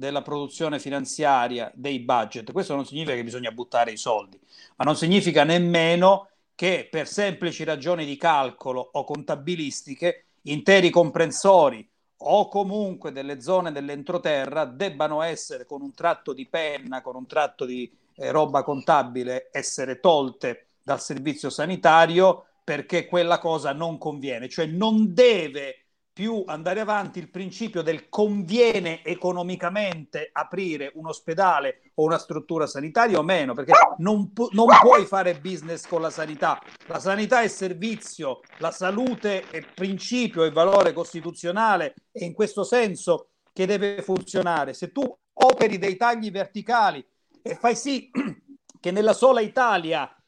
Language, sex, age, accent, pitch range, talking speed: Italian, male, 40-59, native, 155-210 Hz, 140 wpm